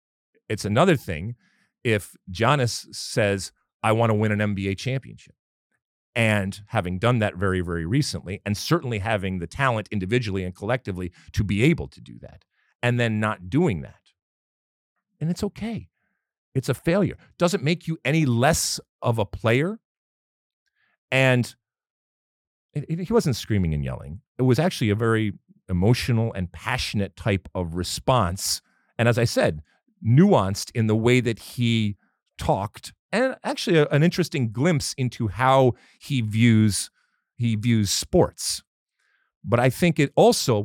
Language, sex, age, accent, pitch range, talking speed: English, male, 40-59, American, 100-135 Hz, 150 wpm